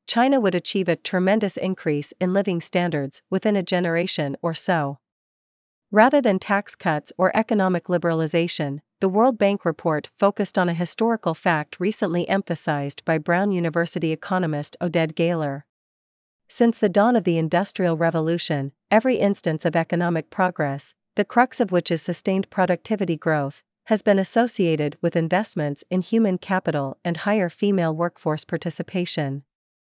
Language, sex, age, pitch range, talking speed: Vietnamese, female, 40-59, 160-200 Hz, 145 wpm